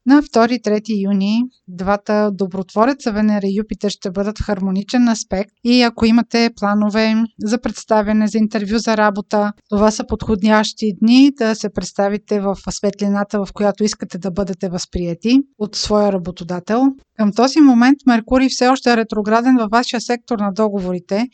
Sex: female